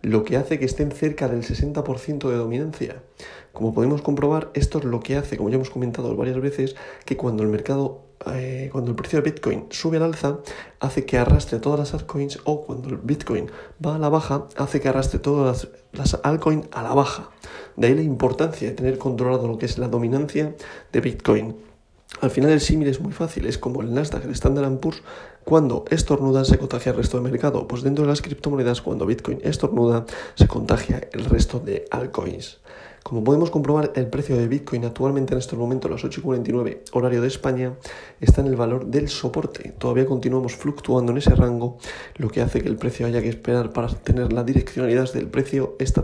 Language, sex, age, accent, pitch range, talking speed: Spanish, male, 40-59, Spanish, 120-145 Hz, 200 wpm